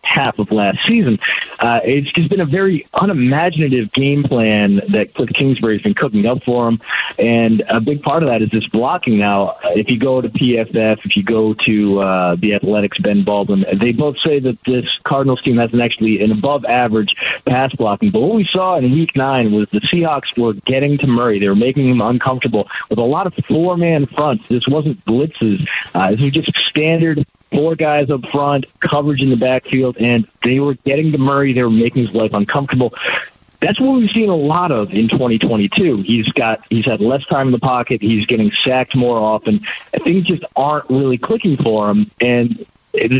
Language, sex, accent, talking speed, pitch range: English, male, American, 200 wpm, 110-145 Hz